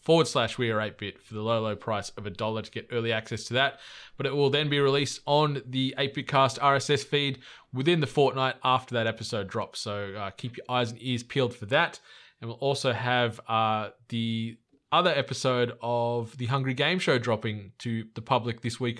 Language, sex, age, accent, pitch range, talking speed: English, male, 20-39, Australian, 115-135 Hz, 210 wpm